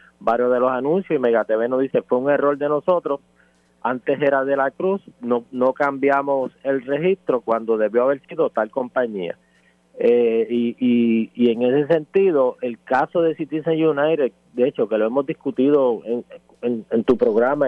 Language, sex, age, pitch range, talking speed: Spanish, male, 30-49, 115-145 Hz, 175 wpm